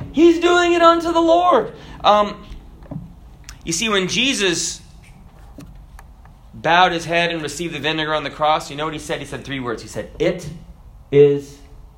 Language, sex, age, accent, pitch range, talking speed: English, male, 30-49, American, 145-200 Hz, 170 wpm